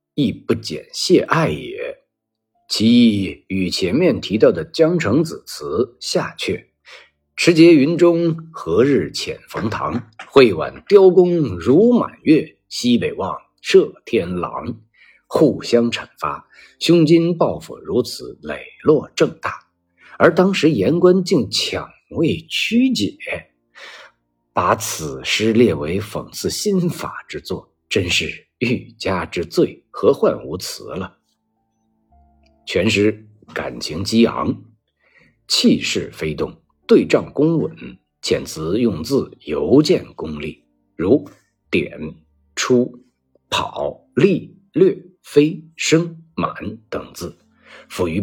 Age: 50-69